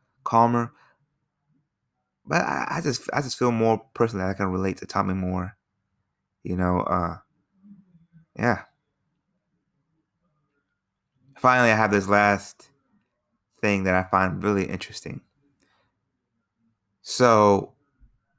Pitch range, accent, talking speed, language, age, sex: 100-120 Hz, American, 105 wpm, English, 20-39, male